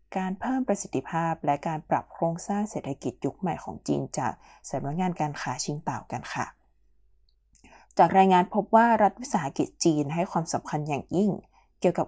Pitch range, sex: 155-200 Hz, female